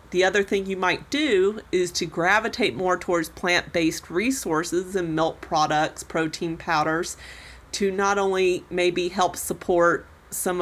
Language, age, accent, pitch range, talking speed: English, 40-59, American, 170-200 Hz, 145 wpm